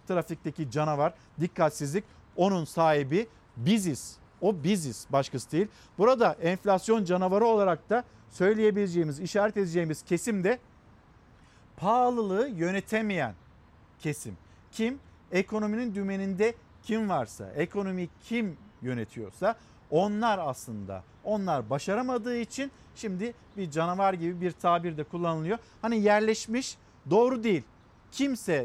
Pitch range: 160-215 Hz